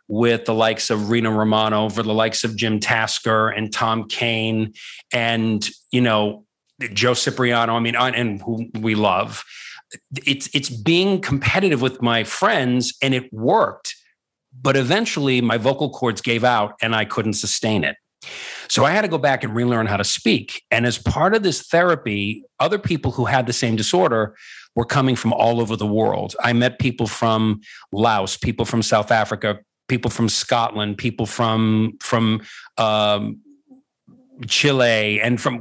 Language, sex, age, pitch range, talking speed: English, male, 50-69, 110-135 Hz, 165 wpm